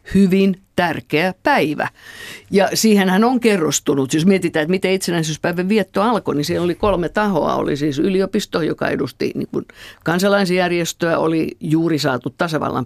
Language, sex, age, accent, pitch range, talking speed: Finnish, female, 50-69, native, 145-190 Hz, 145 wpm